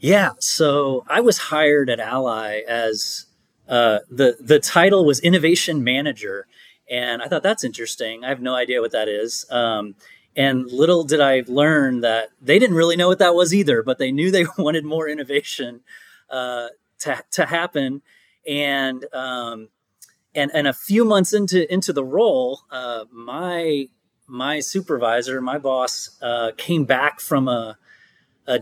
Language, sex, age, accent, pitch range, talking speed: English, male, 30-49, American, 125-155 Hz, 160 wpm